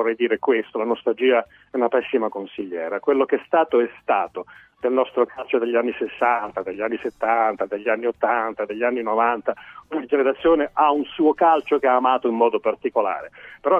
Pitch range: 125-205 Hz